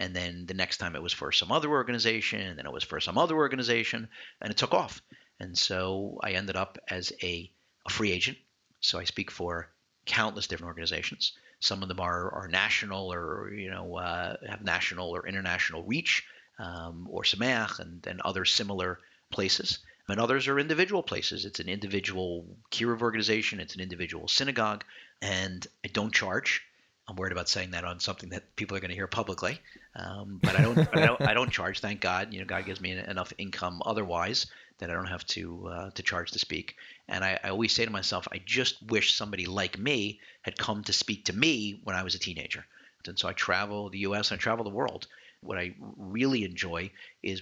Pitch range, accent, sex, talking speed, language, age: 90-110 Hz, American, male, 210 wpm, English, 50-69